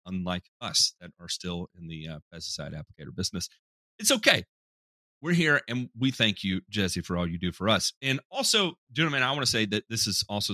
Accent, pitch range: American, 95-125 Hz